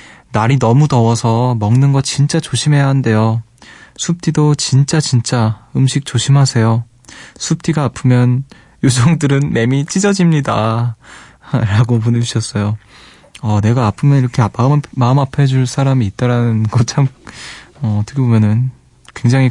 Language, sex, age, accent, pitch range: Korean, male, 20-39, native, 115-140 Hz